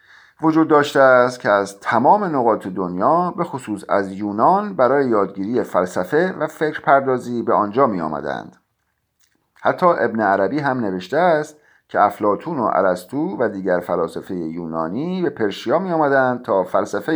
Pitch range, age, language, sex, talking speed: 100-150 Hz, 50-69, Persian, male, 140 wpm